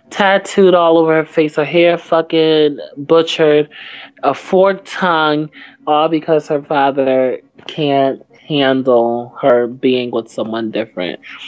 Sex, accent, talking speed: male, American, 120 wpm